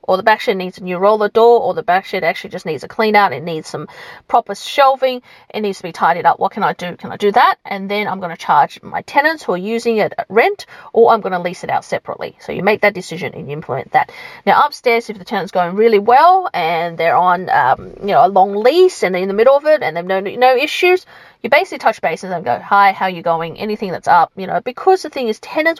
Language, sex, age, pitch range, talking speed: English, female, 40-59, 185-250 Hz, 280 wpm